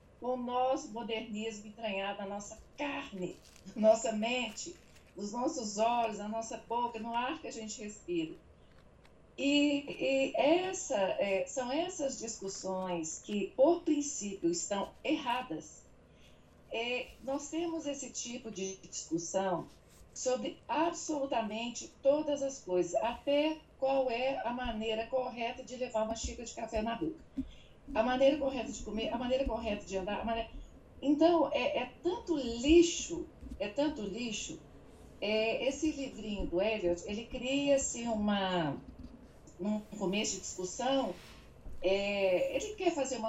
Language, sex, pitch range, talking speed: Portuguese, female, 215-275 Hz, 135 wpm